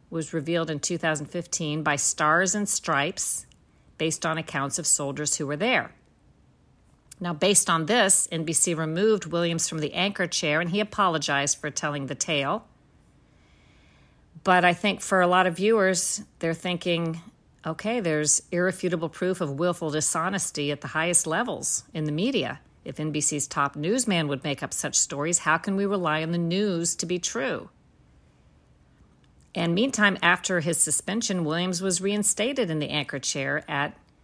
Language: English